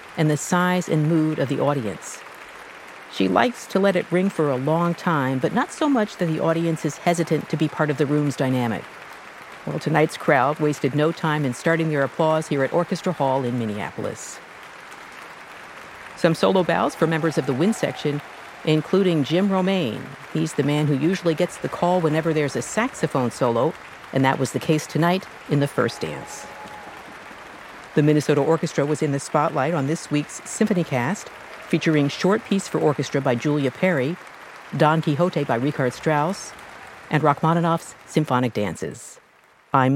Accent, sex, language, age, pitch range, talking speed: American, female, English, 50-69, 140-175 Hz, 175 wpm